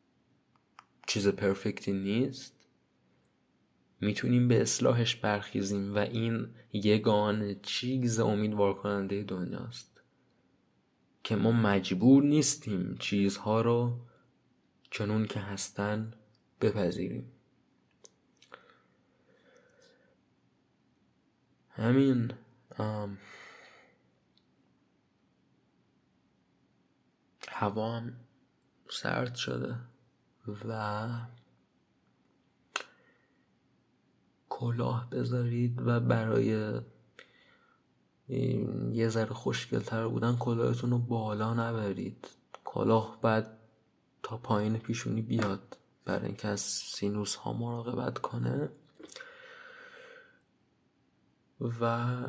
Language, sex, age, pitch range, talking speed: Persian, male, 20-39, 100-120 Hz, 65 wpm